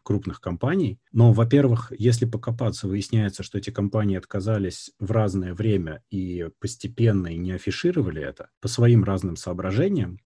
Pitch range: 95-115 Hz